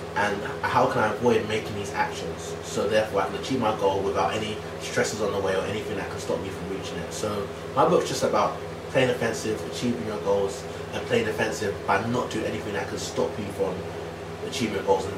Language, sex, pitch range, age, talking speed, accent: English, male, 85-110 Hz, 20-39, 220 wpm, British